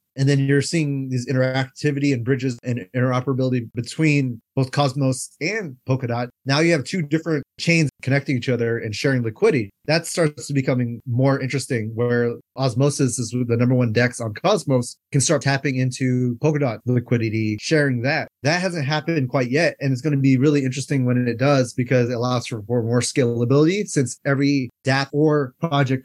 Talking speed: 175 wpm